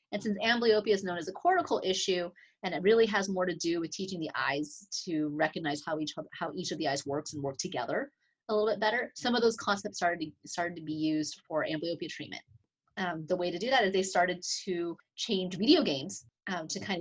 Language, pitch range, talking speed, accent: English, 160-205 Hz, 225 wpm, American